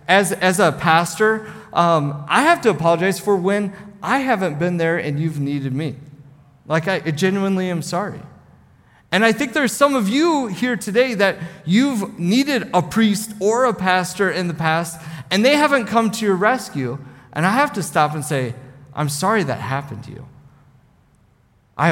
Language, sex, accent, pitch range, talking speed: English, male, American, 135-190 Hz, 180 wpm